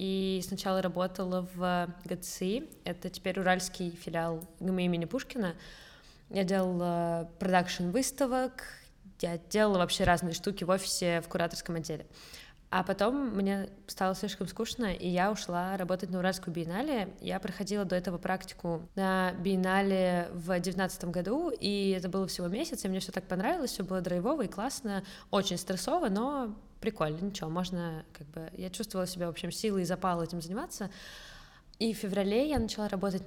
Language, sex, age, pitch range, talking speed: Russian, female, 20-39, 175-200 Hz, 160 wpm